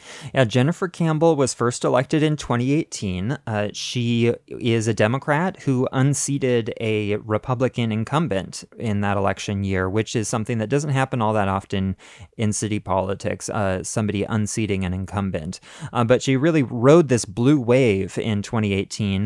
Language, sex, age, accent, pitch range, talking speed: English, male, 20-39, American, 100-125 Hz, 155 wpm